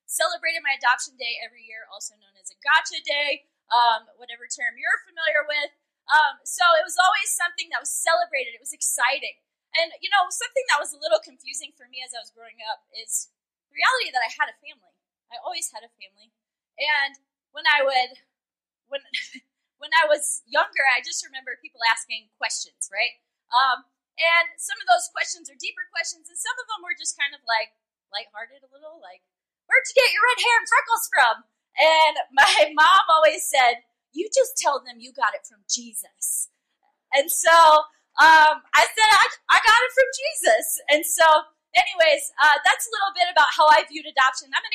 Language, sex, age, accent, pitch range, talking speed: English, female, 20-39, American, 245-335 Hz, 195 wpm